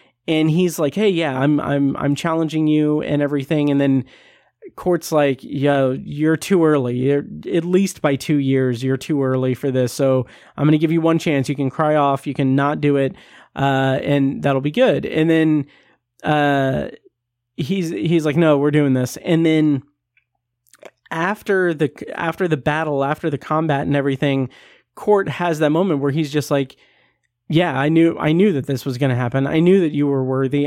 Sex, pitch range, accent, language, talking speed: male, 135-165 Hz, American, English, 195 wpm